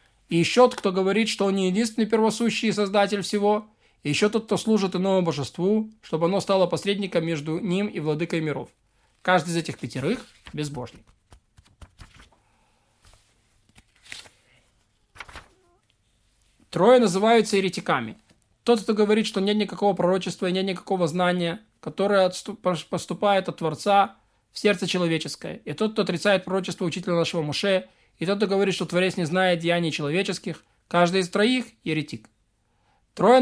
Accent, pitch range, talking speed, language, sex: native, 150-200 Hz, 140 wpm, Russian, male